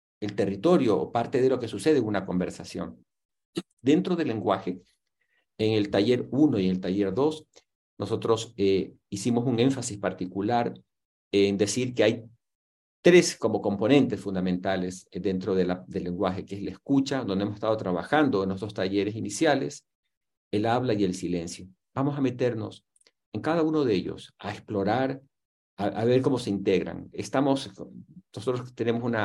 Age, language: 50-69, Spanish